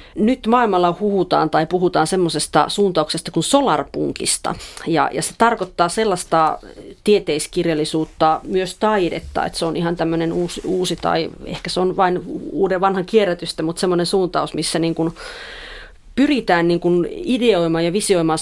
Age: 30-49